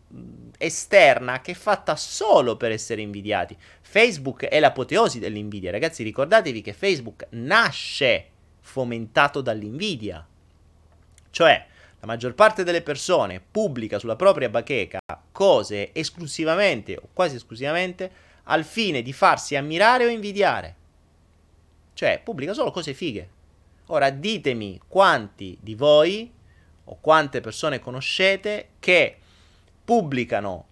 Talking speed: 110 wpm